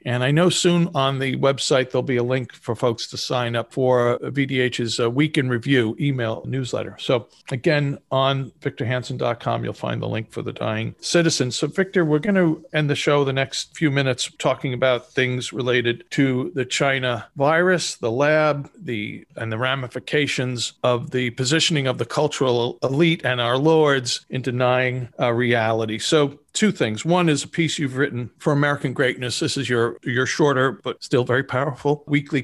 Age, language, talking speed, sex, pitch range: 50-69, English, 180 wpm, male, 125-160 Hz